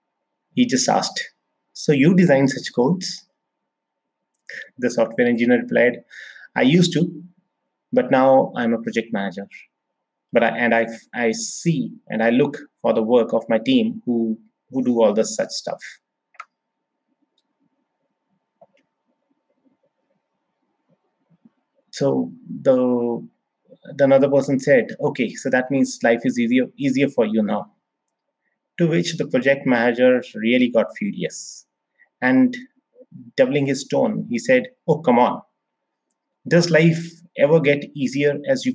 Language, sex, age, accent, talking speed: English, male, 30-49, Indian, 130 wpm